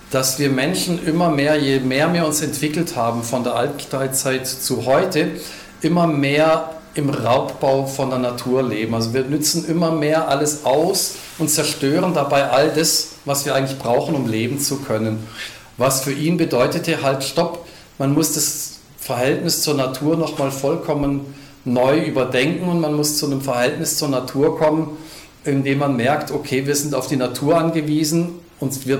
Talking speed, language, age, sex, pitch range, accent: 170 wpm, German, 40-59, male, 130-160 Hz, German